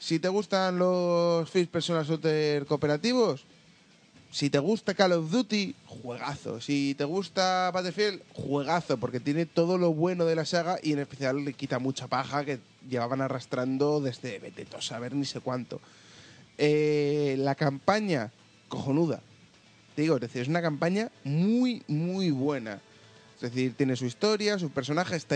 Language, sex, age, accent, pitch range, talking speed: Spanish, male, 20-39, Spanish, 130-170 Hz, 160 wpm